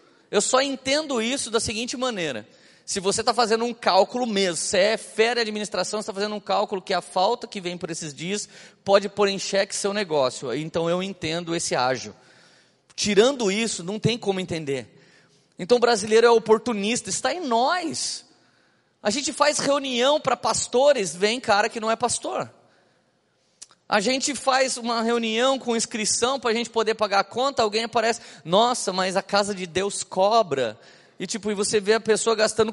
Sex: male